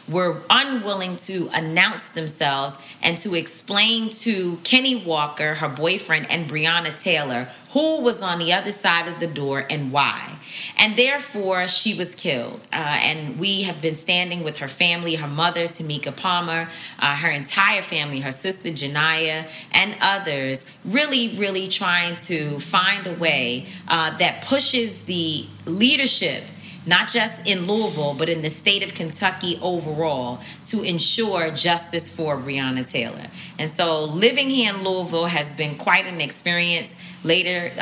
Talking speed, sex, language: 150 wpm, female, English